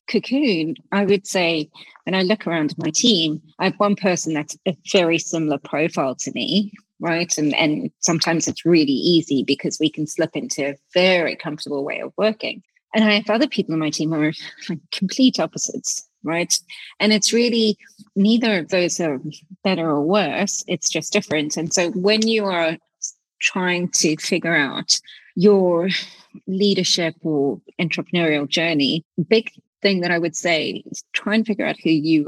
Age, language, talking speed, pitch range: 30-49, English, 170 wpm, 160-200 Hz